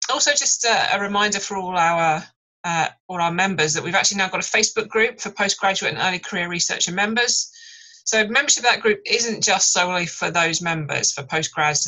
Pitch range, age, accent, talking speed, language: 165-220 Hz, 30-49, British, 200 wpm, English